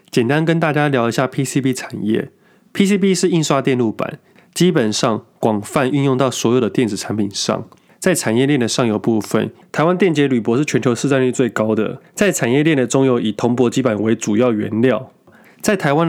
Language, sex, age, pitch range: Chinese, male, 20-39, 110-145 Hz